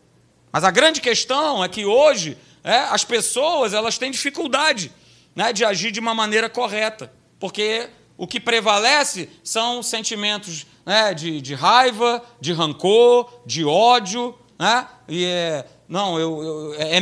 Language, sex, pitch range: Portuguese, male, 215-270 Hz